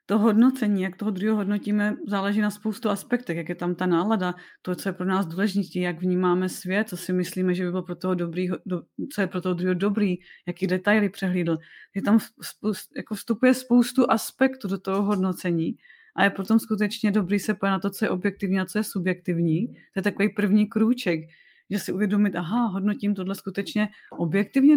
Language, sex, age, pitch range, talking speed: Czech, female, 30-49, 185-215 Hz, 195 wpm